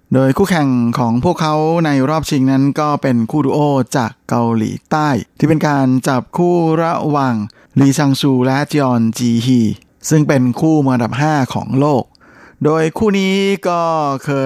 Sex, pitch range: male, 125-150 Hz